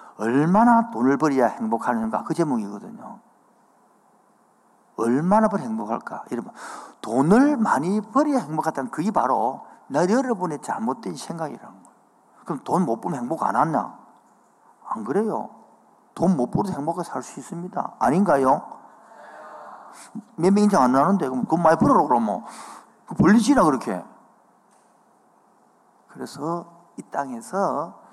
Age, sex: 40-59, male